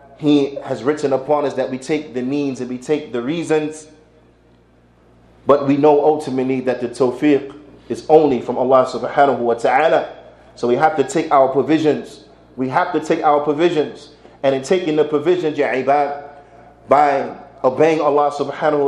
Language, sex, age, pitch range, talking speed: English, male, 30-49, 130-150 Hz, 160 wpm